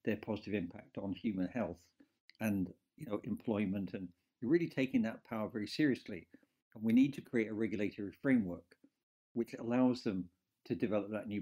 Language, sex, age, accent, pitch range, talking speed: English, male, 60-79, British, 105-130 Hz, 170 wpm